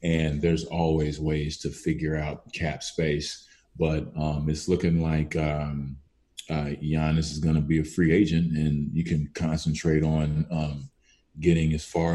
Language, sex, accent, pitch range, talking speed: English, male, American, 75-85 Hz, 165 wpm